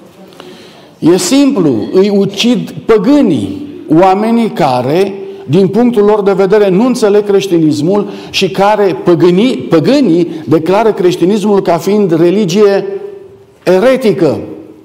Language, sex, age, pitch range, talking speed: Romanian, male, 50-69, 175-220 Hz, 100 wpm